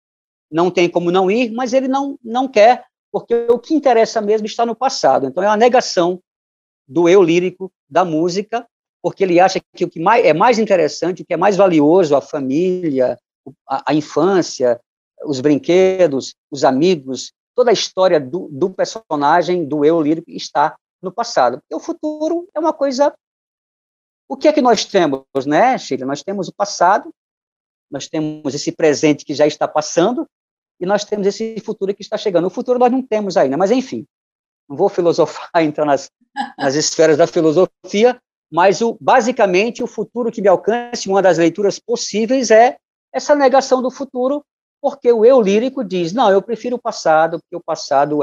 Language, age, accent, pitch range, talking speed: Portuguese, 50-69, Brazilian, 165-245 Hz, 180 wpm